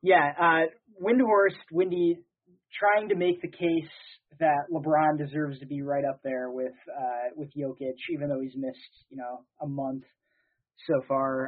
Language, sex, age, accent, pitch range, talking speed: English, male, 20-39, American, 135-165 Hz, 160 wpm